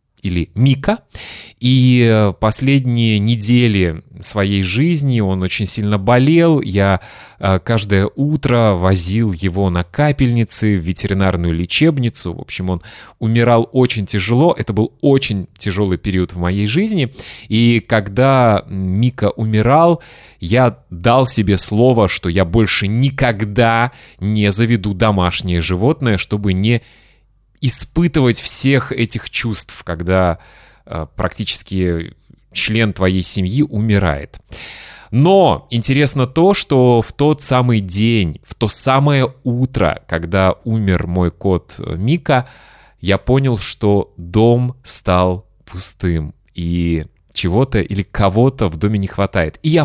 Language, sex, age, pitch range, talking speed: Russian, male, 20-39, 95-130 Hz, 115 wpm